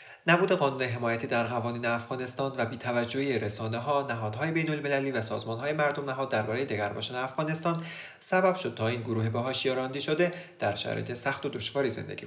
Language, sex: English, male